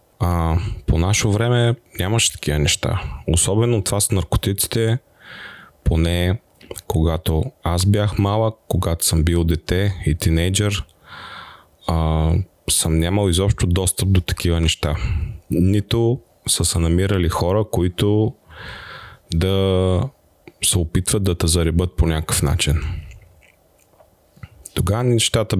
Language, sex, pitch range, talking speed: Bulgarian, male, 80-95 Hz, 110 wpm